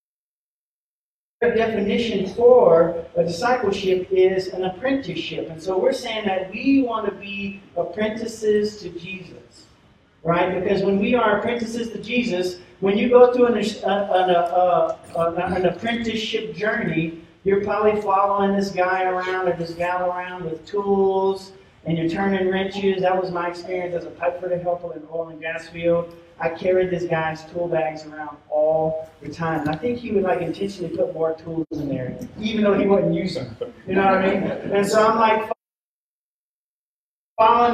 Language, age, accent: English, 40-59, American